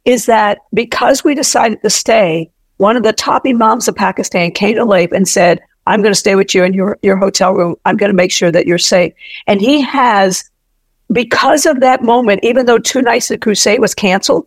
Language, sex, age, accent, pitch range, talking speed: English, female, 50-69, American, 190-235 Hz, 225 wpm